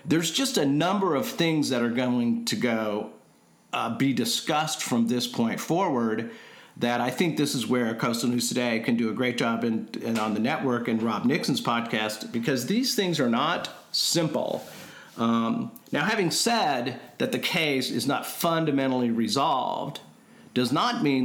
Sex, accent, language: male, American, English